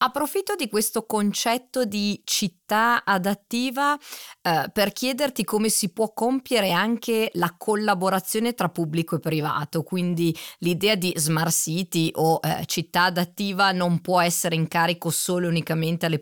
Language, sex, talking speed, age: Italian, female, 145 wpm, 30-49